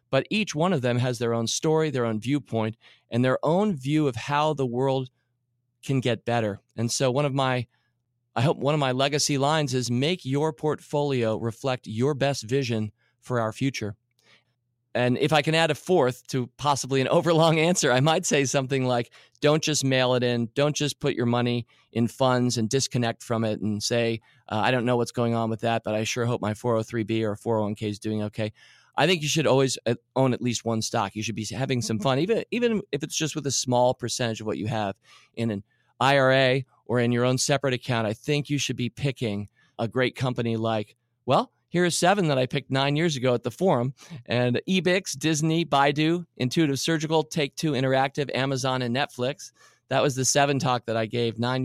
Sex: male